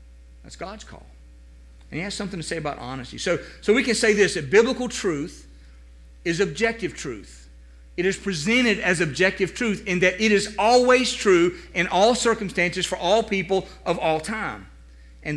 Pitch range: 125-210 Hz